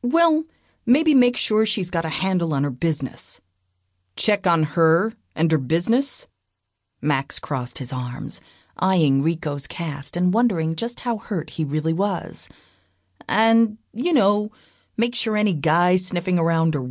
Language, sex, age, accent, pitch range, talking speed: English, female, 40-59, American, 130-200 Hz, 150 wpm